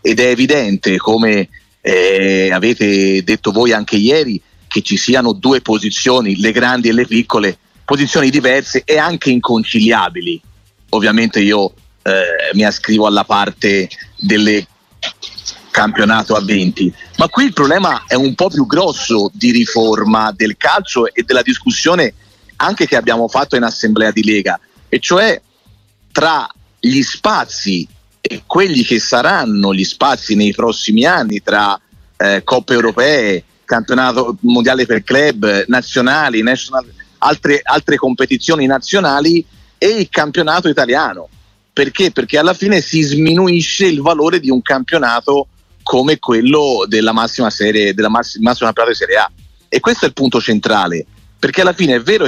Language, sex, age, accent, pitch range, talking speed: Italian, male, 40-59, native, 105-135 Hz, 140 wpm